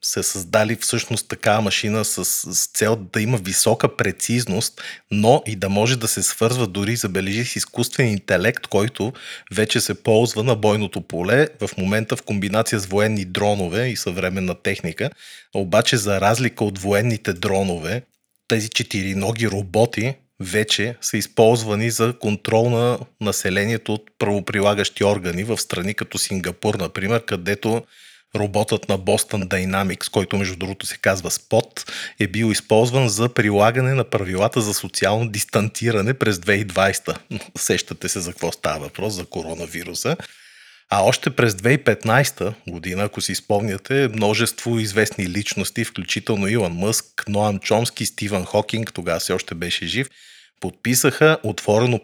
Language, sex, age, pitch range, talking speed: Bulgarian, male, 30-49, 100-115 Hz, 140 wpm